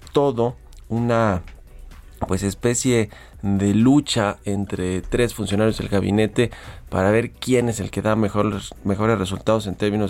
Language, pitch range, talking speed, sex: Spanish, 95-115 Hz, 135 wpm, male